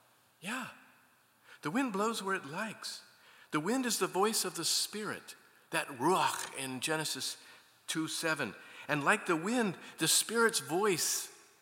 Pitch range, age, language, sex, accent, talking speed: 140-225 Hz, 50-69, English, male, American, 140 wpm